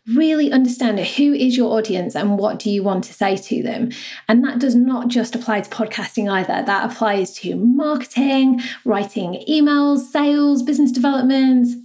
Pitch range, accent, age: 205-245 Hz, British, 20-39